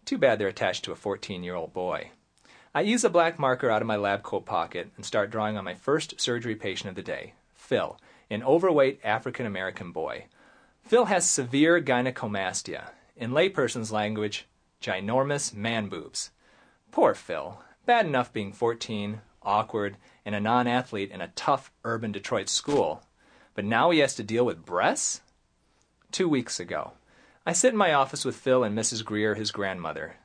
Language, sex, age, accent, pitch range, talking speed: English, male, 40-59, American, 105-145 Hz, 165 wpm